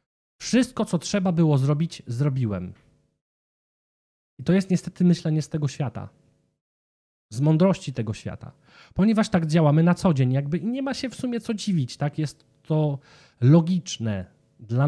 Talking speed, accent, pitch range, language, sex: 150 wpm, native, 120-165 Hz, Polish, male